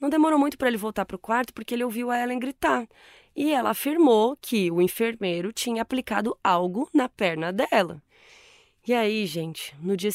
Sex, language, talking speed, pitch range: female, Portuguese, 190 wpm, 180-235 Hz